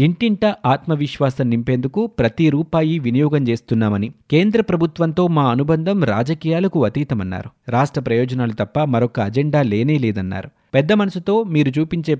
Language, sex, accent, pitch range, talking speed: Telugu, male, native, 115-160 Hz, 115 wpm